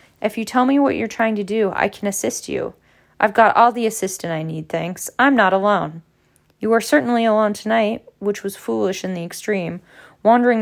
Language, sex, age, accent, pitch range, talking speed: English, female, 20-39, American, 175-215 Hz, 205 wpm